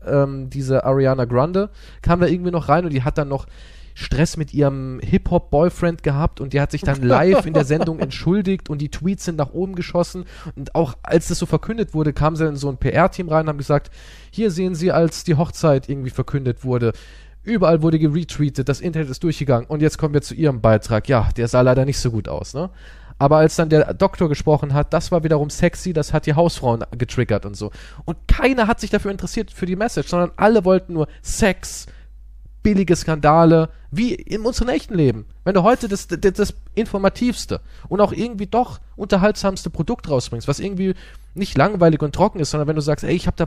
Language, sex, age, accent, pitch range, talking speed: German, male, 20-39, German, 140-180 Hz, 210 wpm